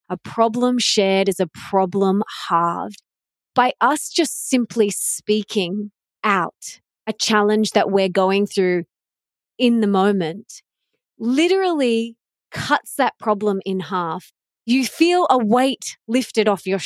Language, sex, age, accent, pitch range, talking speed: English, female, 20-39, Australian, 195-255 Hz, 125 wpm